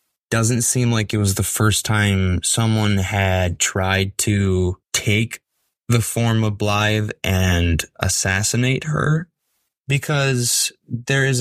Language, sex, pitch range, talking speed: English, male, 95-120 Hz, 120 wpm